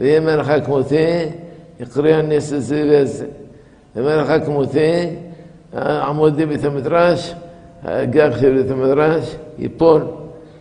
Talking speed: 75 wpm